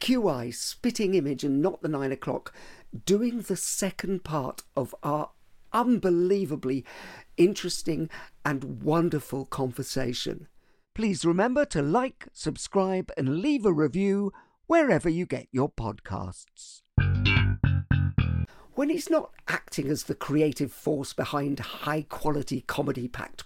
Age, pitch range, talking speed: 50-69, 135-200 Hz, 115 wpm